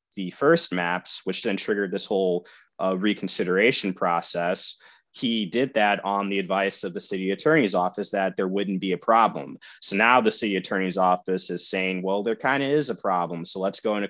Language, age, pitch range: English, 20-39, 85-95 Hz